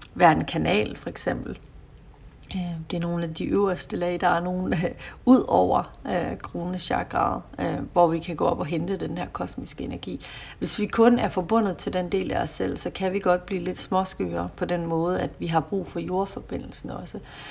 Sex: female